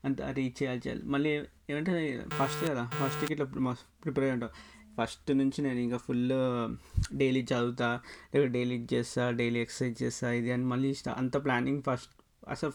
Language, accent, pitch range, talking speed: Telugu, native, 125-150 Hz, 155 wpm